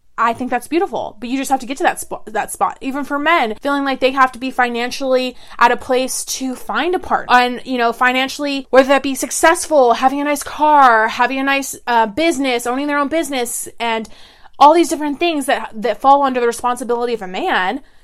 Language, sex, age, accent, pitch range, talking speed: English, female, 20-39, American, 240-295 Hz, 225 wpm